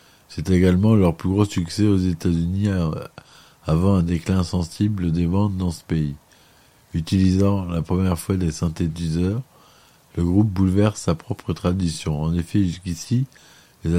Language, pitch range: French, 85-95 Hz